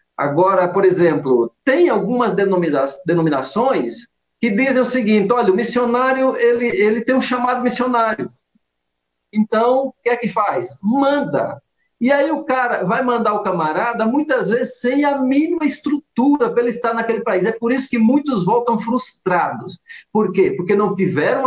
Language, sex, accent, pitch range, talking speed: Portuguese, male, Brazilian, 195-245 Hz, 160 wpm